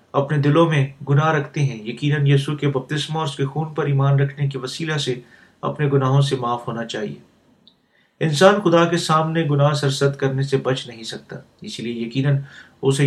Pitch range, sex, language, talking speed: 135-150 Hz, male, Urdu, 195 wpm